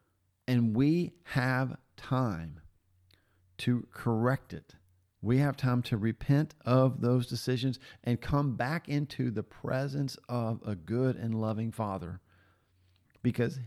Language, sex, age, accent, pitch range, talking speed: English, male, 40-59, American, 100-130 Hz, 125 wpm